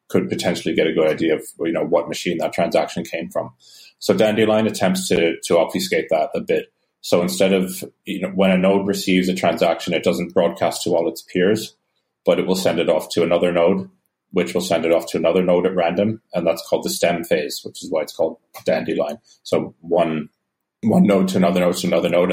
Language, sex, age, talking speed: English, male, 30-49, 225 wpm